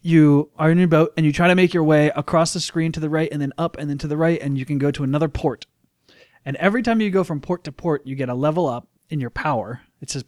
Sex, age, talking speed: male, 20-39, 305 wpm